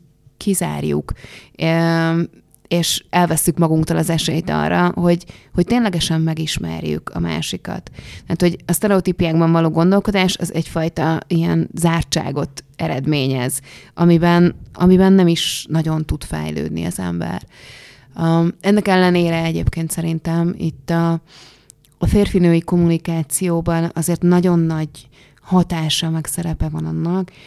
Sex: female